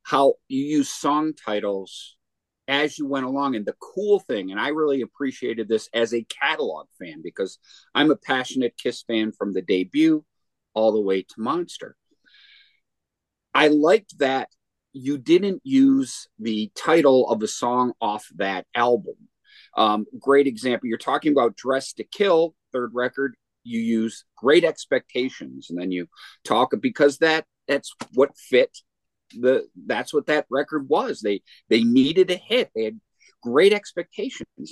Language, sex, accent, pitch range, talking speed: English, male, American, 120-180 Hz, 155 wpm